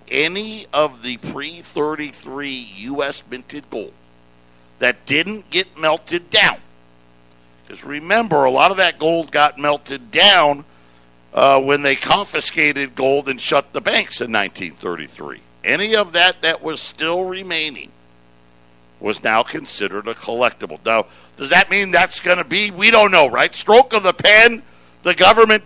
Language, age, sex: English, 60-79, male